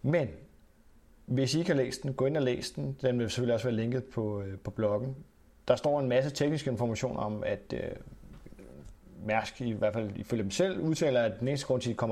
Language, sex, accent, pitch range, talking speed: Danish, male, native, 110-130 Hz, 225 wpm